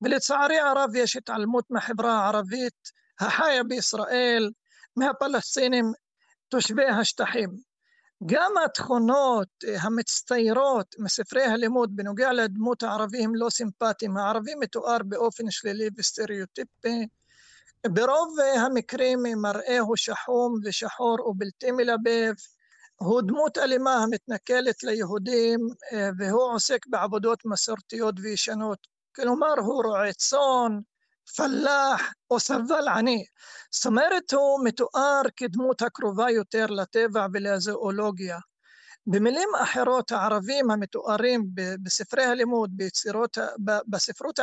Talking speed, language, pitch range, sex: 90 wpm, Hebrew, 215-255 Hz, male